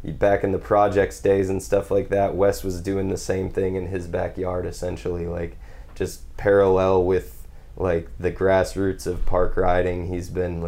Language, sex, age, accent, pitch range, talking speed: English, male, 20-39, American, 90-100 Hz, 175 wpm